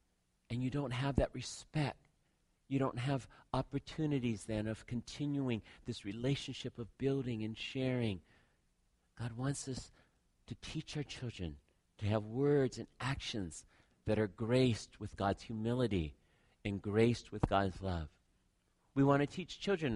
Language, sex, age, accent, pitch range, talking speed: English, male, 50-69, American, 100-140 Hz, 140 wpm